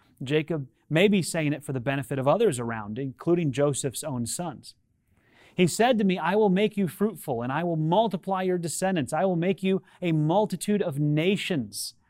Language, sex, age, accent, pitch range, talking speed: English, male, 30-49, American, 125-175 Hz, 190 wpm